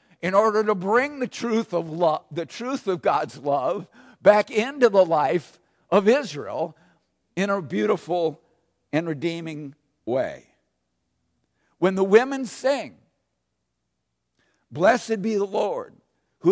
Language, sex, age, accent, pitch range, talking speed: English, male, 60-79, American, 165-210 Hz, 125 wpm